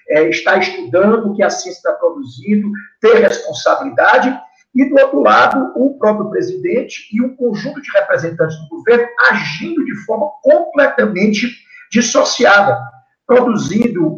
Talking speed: 130 wpm